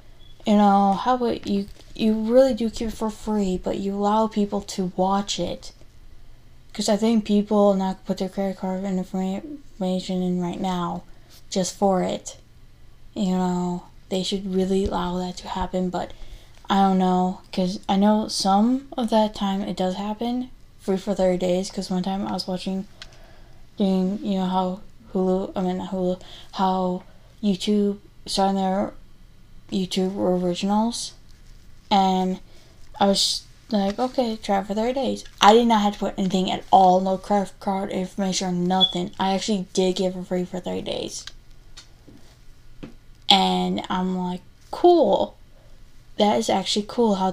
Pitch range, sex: 185-205 Hz, female